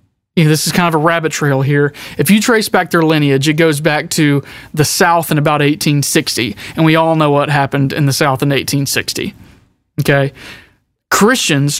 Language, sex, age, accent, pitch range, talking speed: English, male, 30-49, American, 145-180 Hz, 190 wpm